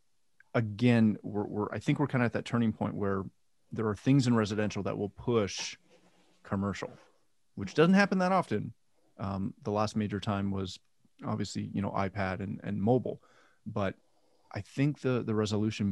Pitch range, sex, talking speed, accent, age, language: 100-120 Hz, male, 175 wpm, American, 30-49, English